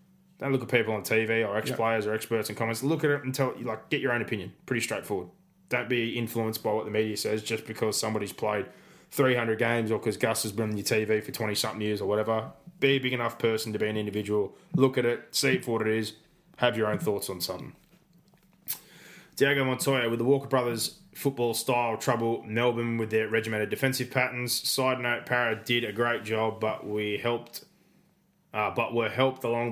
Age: 20-39